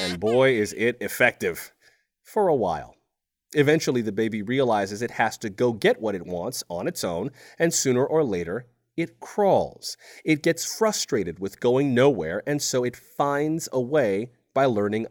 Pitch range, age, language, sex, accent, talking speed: 120-165 Hz, 30-49, English, male, American, 170 wpm